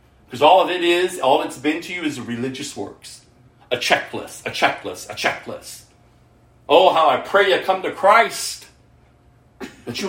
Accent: American